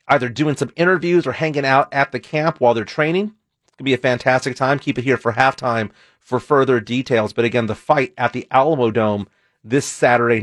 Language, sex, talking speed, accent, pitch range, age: English, male, 220 wpm, American, 120-150 Hz, 40-59